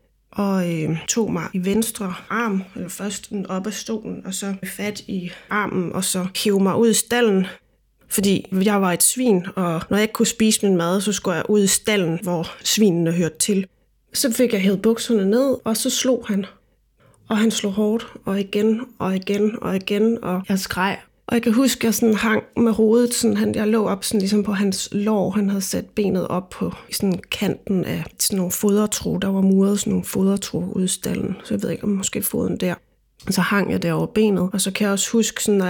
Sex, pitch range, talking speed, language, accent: female, 185-220 Hz, 220 wpm, Danish, native